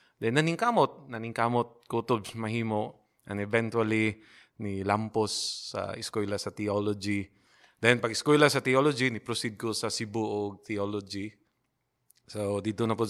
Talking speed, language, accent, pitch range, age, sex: 115 wpm, Filipino, native, 105-120 Hz, 20-39, male